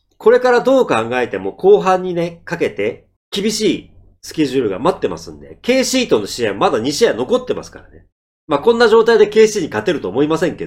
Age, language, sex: 40-59, Japanese, male